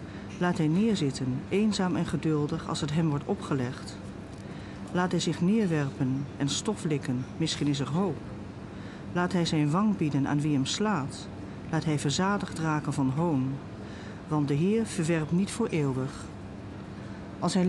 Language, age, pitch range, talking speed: Dutch, 40-59, 140-185 Hz, 155 wpm